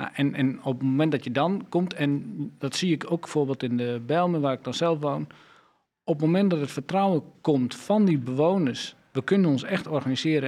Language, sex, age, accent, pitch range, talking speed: Dutch, male, 40-59, Dutch, 135-170 Hz, 220 wpm